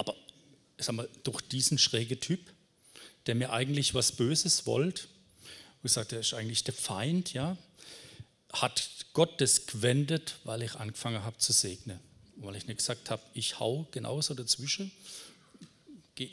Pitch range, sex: 115-150 Hz, male